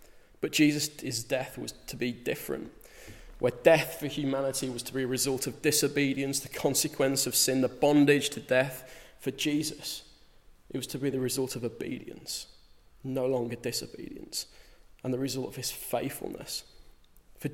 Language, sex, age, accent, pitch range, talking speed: English, male, 20-39, British, 125-145 Hz, 155 wpm